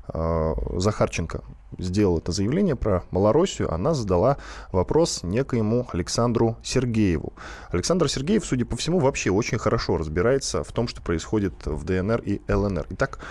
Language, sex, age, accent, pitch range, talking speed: Russian, male, 20-39, native, 95-130 Hz, 135 wpm